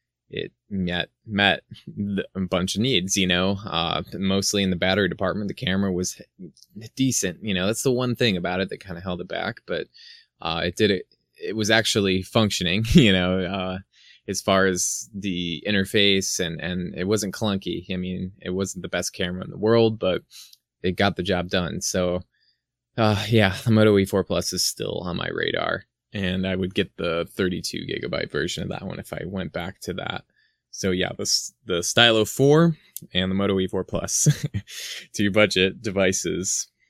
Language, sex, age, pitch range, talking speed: English, male, 20-39, 90-110 Hz, 185 wpm